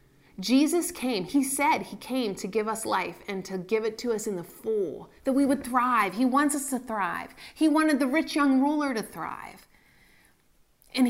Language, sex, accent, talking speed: English, female, American, 200 wpm